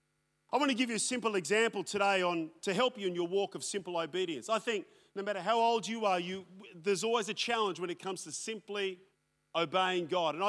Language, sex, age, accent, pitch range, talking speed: English, male, 40-59, Australian, 180-215 Hz, 230 wpm